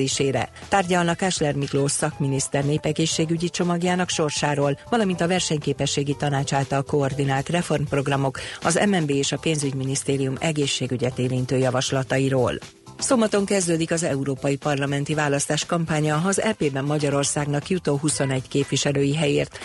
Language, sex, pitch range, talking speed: Hungarian, female, 135-160 Hz, 110 wpm